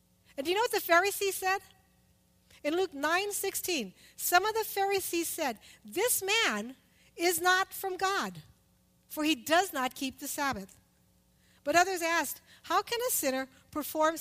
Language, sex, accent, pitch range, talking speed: English, female, American, 270-375 Hz, 155 wpm